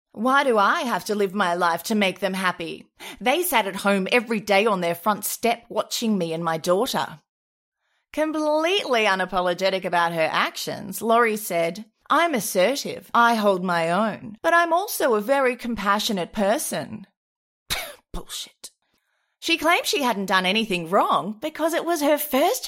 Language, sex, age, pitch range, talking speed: English, female, 30-49, 175-260 Hz, 160 wpm